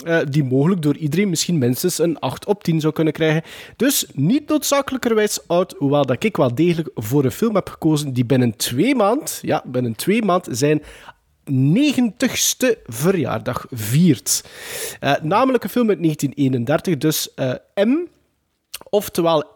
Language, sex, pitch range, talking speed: Dutch, male, 140-190 Hz, 145 wpm